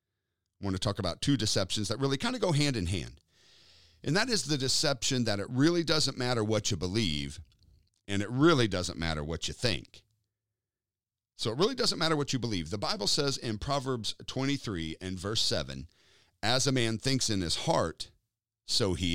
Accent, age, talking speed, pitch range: American, 50-69, 190 wpm, 100-150 Hz